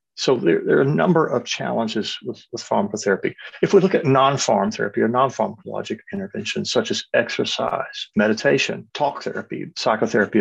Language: English